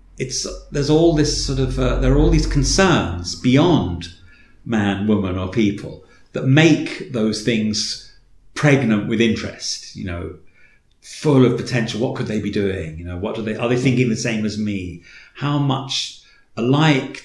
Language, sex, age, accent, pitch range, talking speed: English, male, 40-59, British, 95-125 Hz, 170 wpm